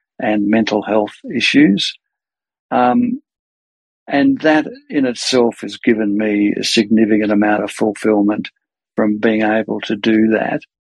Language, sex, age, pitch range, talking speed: English, male, 50-69, 105-120 Hz, 125 wpm